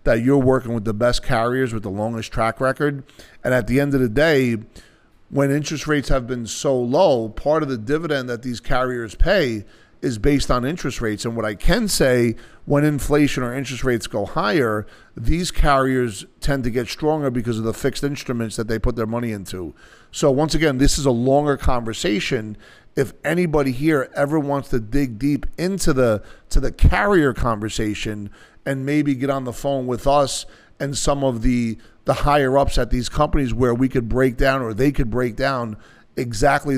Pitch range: 115-145 Hz